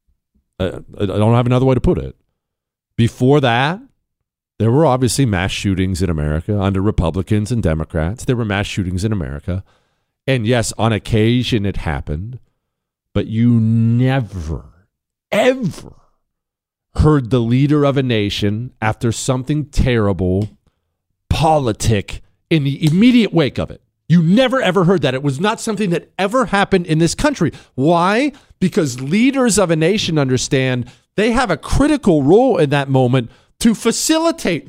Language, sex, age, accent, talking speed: English, male, 40-59, American, 150 wpm